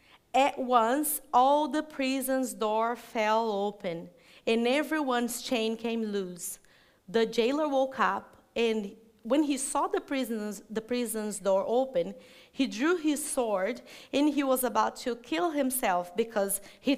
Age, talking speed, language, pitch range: 30-49, 140 wpm, English, 220-275 Hz